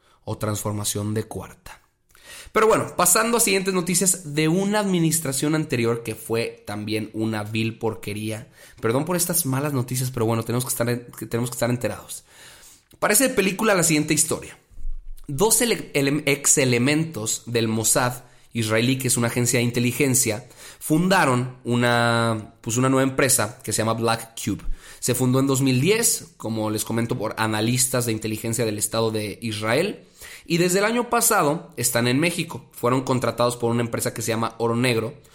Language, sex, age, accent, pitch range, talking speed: Spanish, male, 30-49, Mexican, 115-145 Hz, 165 wpm